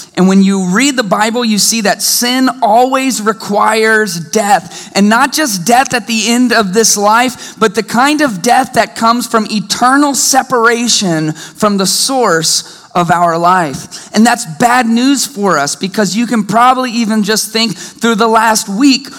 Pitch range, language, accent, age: 210-255 Hz, English, American, 30-49